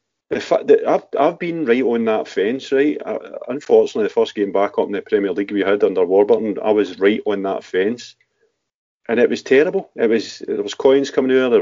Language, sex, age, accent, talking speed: English, male, 40-59, British, 225 wpm